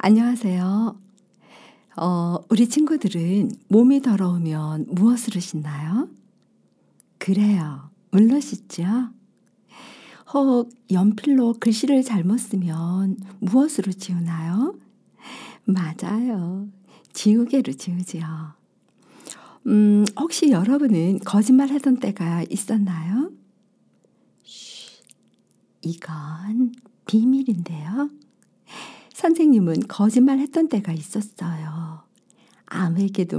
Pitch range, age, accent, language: 185-255 Hz, 50-69, native, Korean